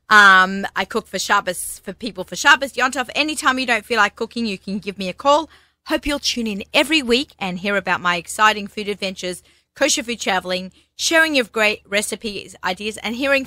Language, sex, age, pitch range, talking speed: English, female, 30-49, 185-245 Hz, 195 wpm